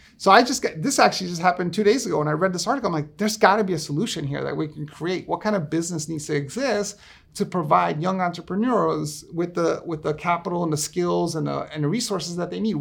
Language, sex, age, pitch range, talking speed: English, male, 30-49, 145-190 Hz, 260 wpm